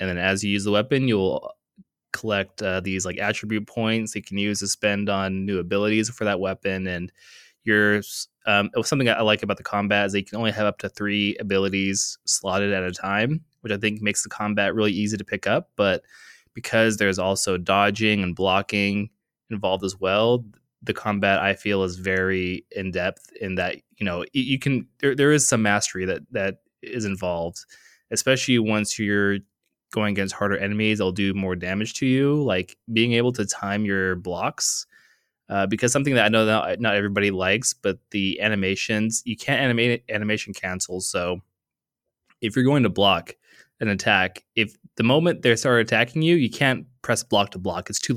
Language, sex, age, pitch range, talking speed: English, male, 20-39, 95-115 Hz, 195 wpm